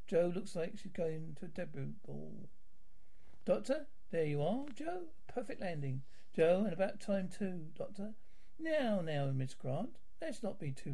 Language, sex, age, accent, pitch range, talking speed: English, male, 60-79, British, 145-210 Hz, 165 wpm